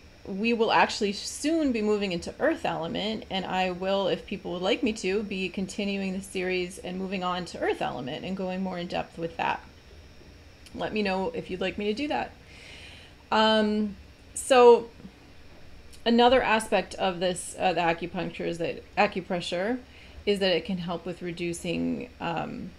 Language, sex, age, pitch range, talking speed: English, female, 30-49, 165-195 Hz, 170 wpm